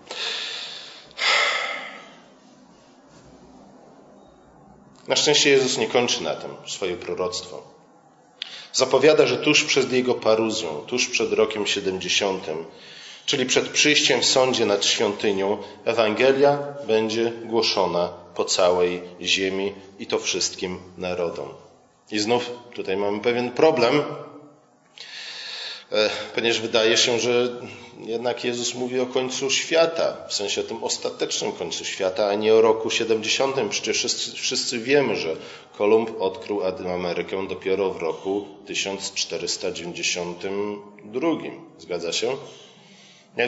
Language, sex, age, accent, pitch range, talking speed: Polish, male, 40-59, native, 110-160 Hz, 110 wpm